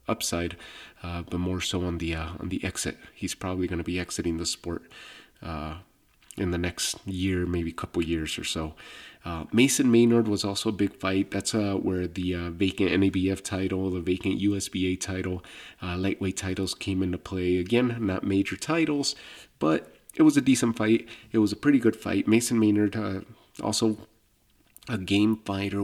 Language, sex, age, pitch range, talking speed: English, male, 30-49, 90-110 Hz, 185 wpm